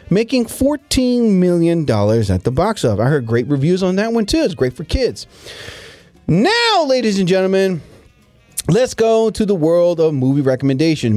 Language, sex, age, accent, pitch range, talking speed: English, male, 30-49, American, 135-200 Hz, 170 wpm